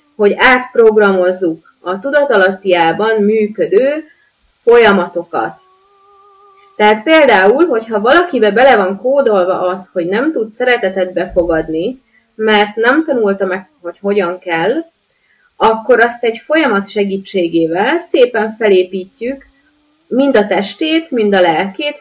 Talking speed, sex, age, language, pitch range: 105 wpm, female, 30-49, Hungarian, 185-250 Hz